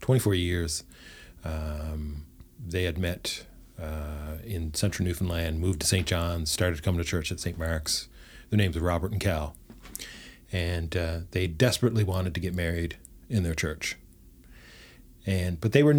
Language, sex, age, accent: English, male, 40-59, American